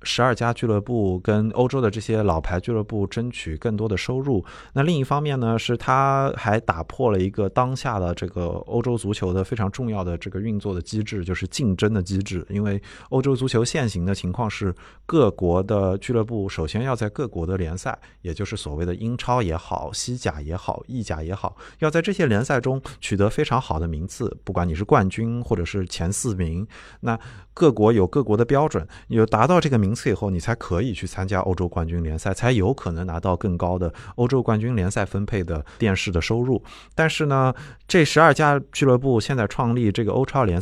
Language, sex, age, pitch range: Chinese, male, 20-39, 90-120 Hz